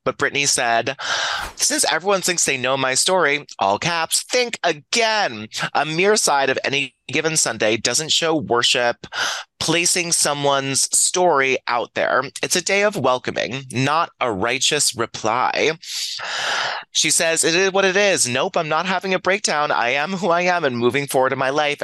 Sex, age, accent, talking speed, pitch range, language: male, 30-49, American, 170 wpm, 115-160 Hz, English